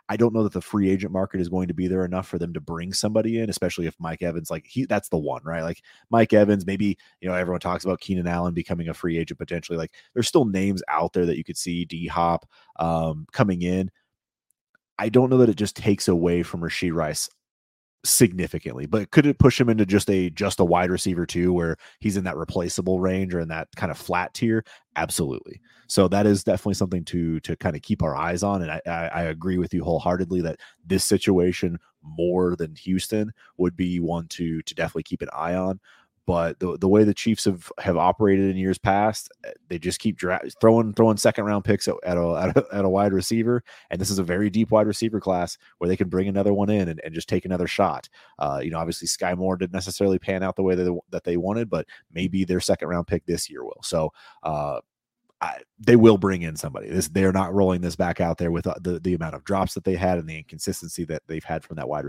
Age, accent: 30-49, American